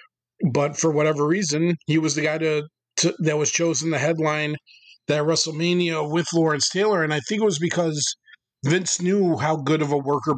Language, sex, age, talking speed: English, male, 40-59, 190 wpm